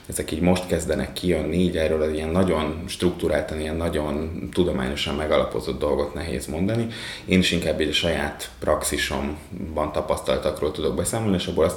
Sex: male